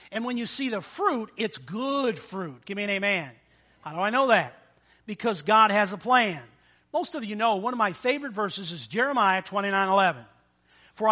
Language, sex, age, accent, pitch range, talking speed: English, male, 50-69, American, 190-260 Hz, 200 wpm